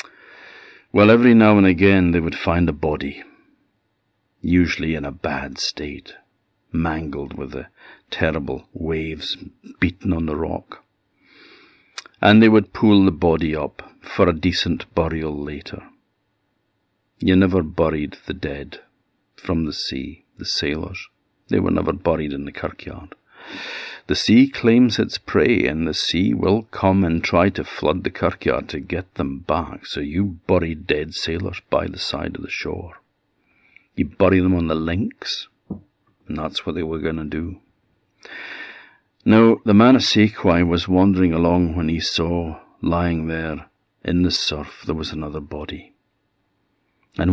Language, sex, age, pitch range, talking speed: English, male, 50-69, 80-100 Hz, 150 wpm